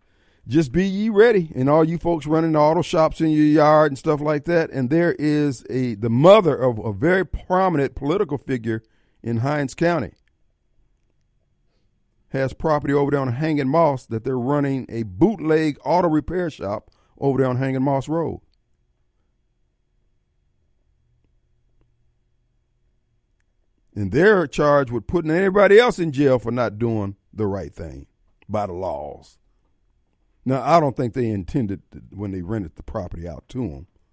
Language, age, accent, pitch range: Japanese, 50-69, American, 100-145 Hz